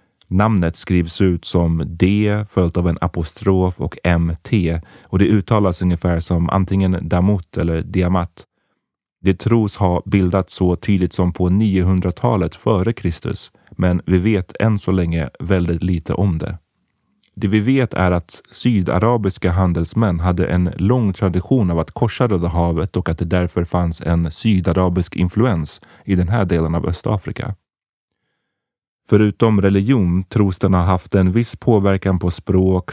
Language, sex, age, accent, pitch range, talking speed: Swedish, male, 30-49, native, 85-100 Hz, 150 wpm